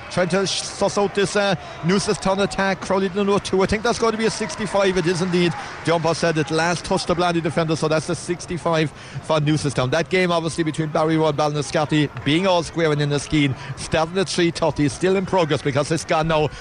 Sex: male